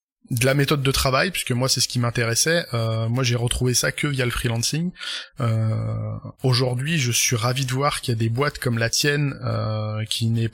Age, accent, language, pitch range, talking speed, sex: 20-39, French, French, 115-145 Hz, 215 wpm, male